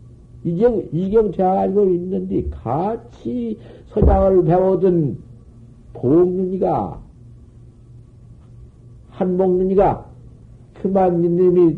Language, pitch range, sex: Korean, 115-170 Hz, male